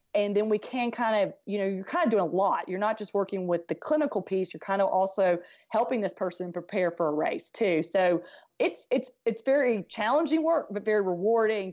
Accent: American